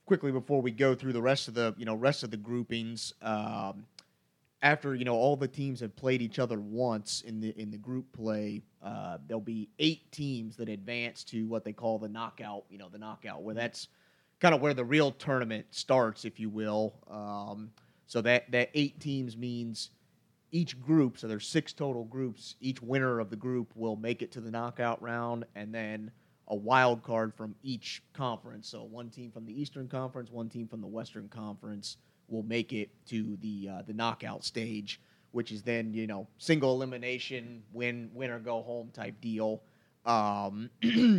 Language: English